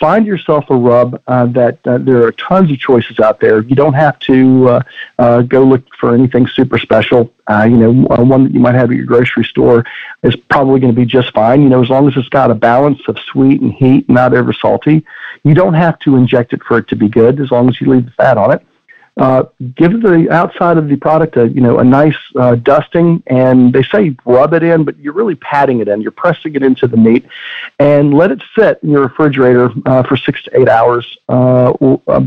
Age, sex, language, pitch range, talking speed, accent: 50-69, male, English, 125-145 Hz, 235 wpm, American